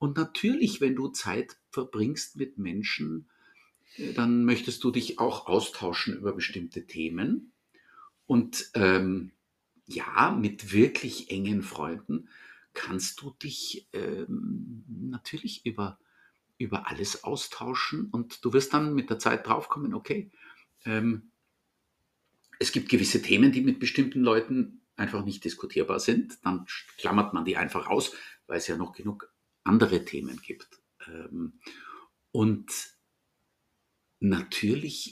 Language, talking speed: German, 120 wpm